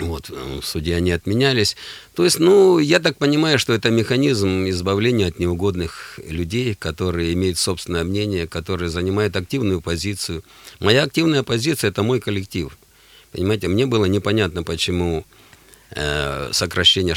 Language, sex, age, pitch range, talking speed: Russian, male, 50-69, 85-105 Hz, 135 wpm